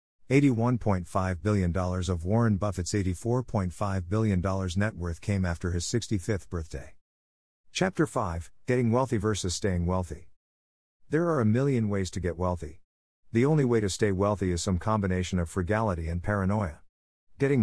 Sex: male